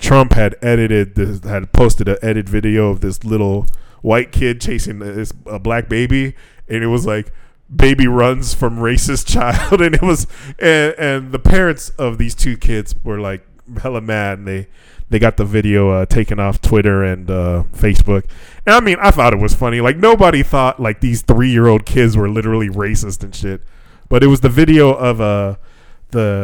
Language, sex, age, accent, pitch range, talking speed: English, male, 20-39, American, 105-125 Hz, 195 wpm